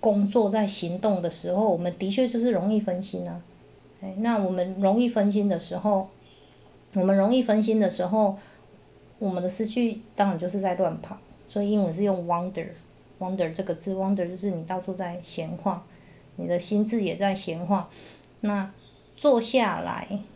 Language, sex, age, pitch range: Chinese, female, 20-39, 180-210 Hz